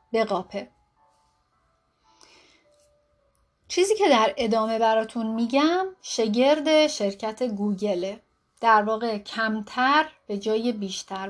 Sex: female